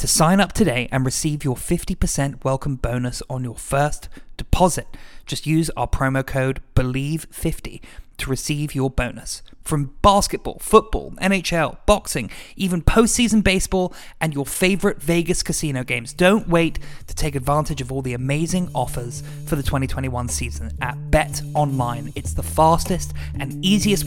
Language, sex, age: English, male, 20-39